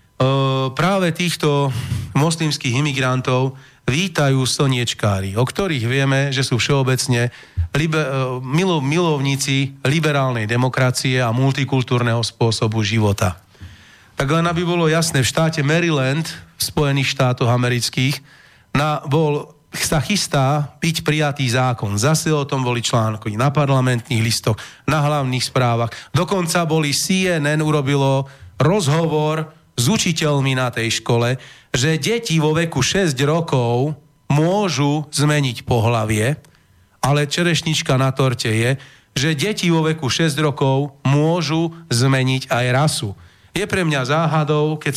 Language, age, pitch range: Slovak, 30-49, 125-155 Hz